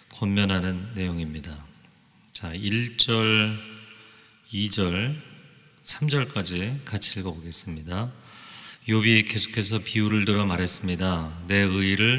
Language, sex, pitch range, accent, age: Korean, male, 95-115 Hz, native, 30-49